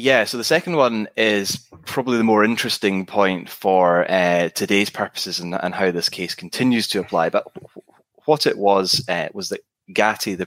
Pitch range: 85-100 Hz